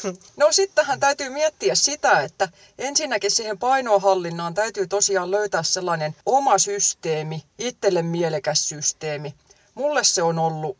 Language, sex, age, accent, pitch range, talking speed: Finnish, female, 30-49, native, 155-210 Hz, 120 wpm